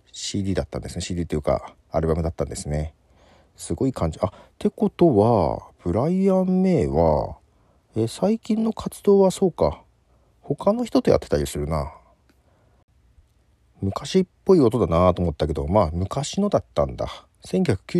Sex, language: male, Japanese